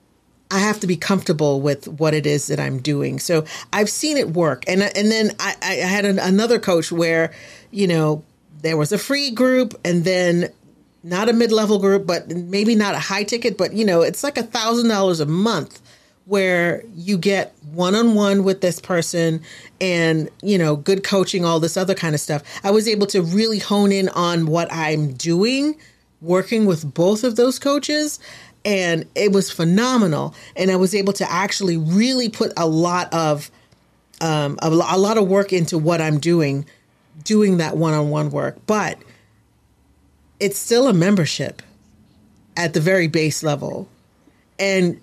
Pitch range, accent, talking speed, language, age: 155-200 Hz, American, 175 wpm, English, 40-59